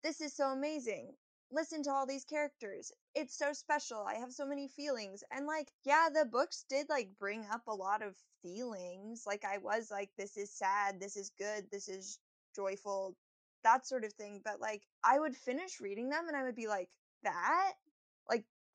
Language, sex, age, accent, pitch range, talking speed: English, female, 10-29, American, 200-275 Hz, 195 wpm